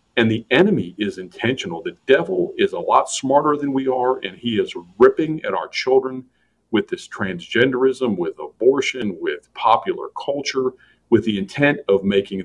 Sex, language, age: male, English, 40-59